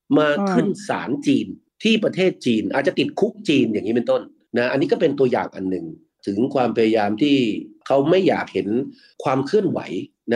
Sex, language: male, Thai